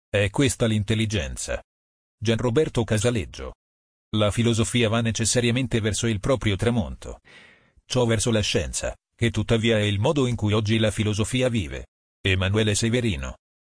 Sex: male